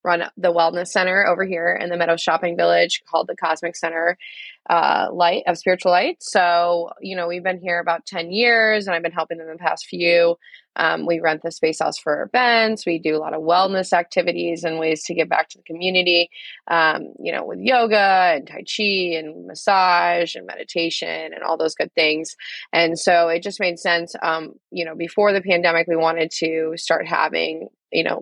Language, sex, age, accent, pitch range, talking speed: English, female, 20-39, American, 160-180 Hz, 205 wpm